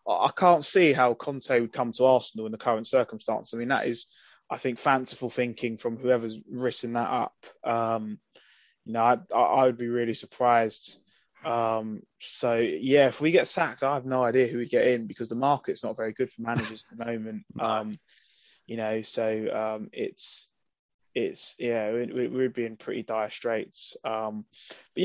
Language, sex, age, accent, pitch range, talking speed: English, male, 20-39, British, 115-130 Hz, 190 wpm